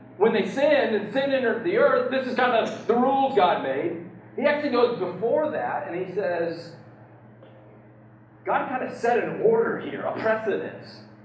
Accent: American